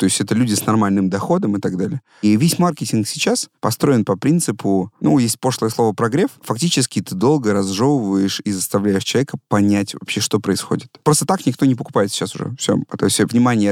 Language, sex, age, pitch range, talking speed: Russian, male, 30-49, 100-125 Hz, 195 wpm